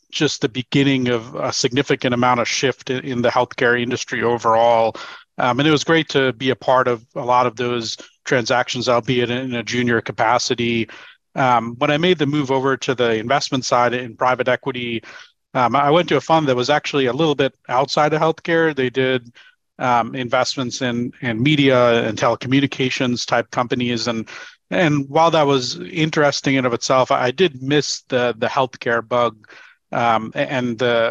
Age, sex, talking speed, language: 40-59, male, 180 wpm, English